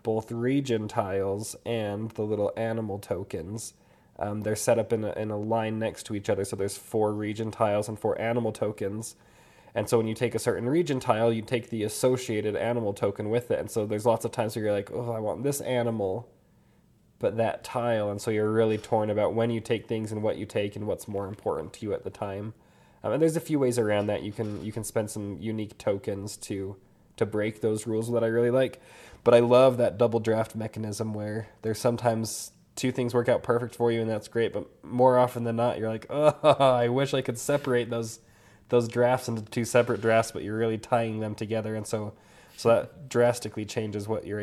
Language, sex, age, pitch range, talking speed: English, male, 20-39, 105-120 Hz, 225 wpm